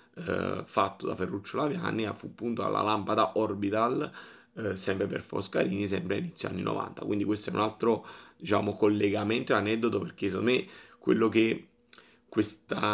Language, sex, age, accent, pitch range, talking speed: Italian, male, 30-49, native, 100-110 Hz, 155 wpm